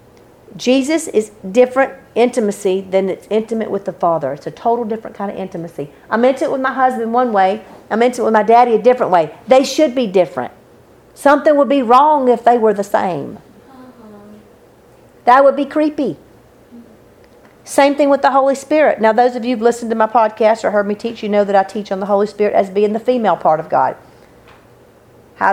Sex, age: female, 50-69